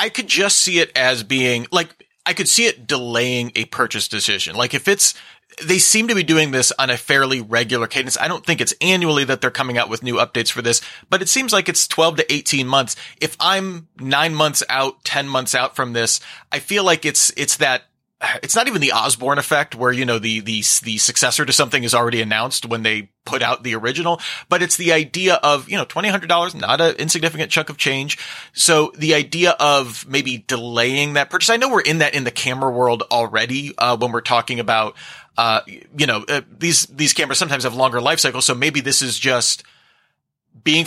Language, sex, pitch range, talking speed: English, male, 120-160 Hz, 220 wpm